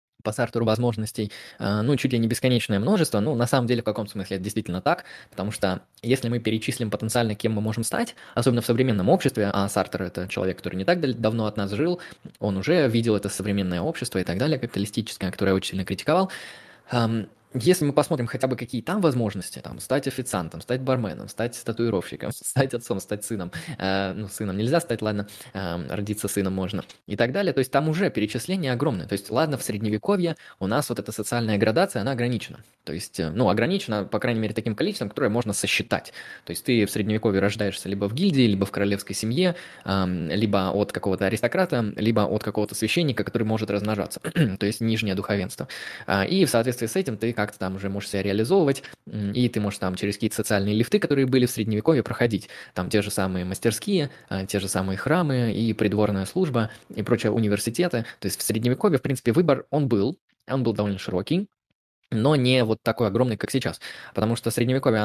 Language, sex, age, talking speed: Russian, male, 20-39, 200 wpm